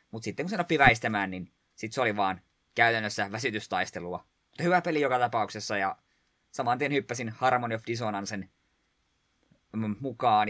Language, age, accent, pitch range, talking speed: Finnish, 20-39, native, 105-140 Hz, 130 wpm